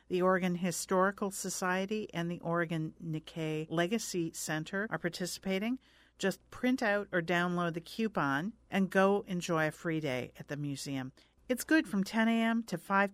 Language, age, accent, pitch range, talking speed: English, 50-69, American, 160-205 Hz, 160 wpm